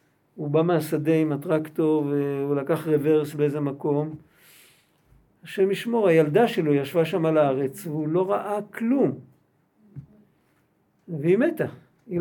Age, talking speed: 50-69, 125 wpm